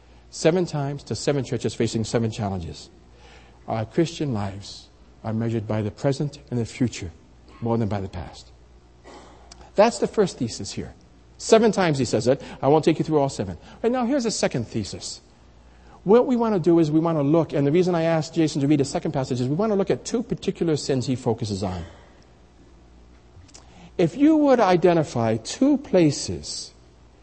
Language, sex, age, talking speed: English, male, 60-79, 190 wpm